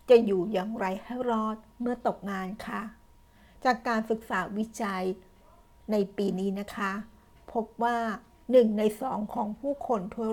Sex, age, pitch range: female, 60-79, 195-235 Hz